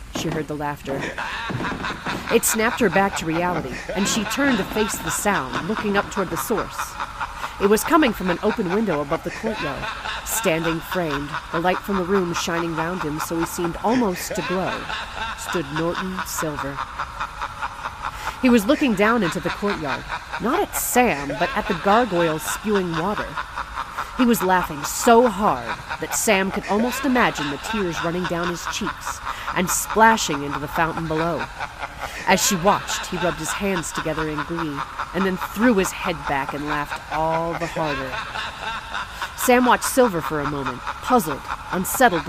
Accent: American